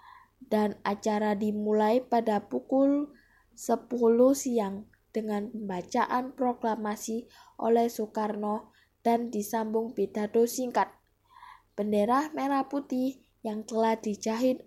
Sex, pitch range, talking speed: female, 210-235 Hz, 90 wpm